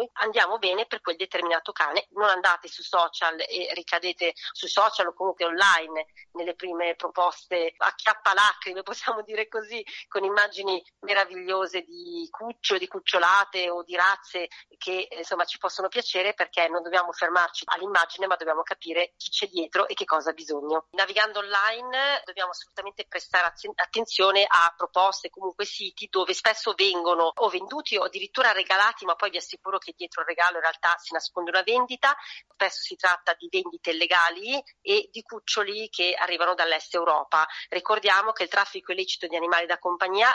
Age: 40-59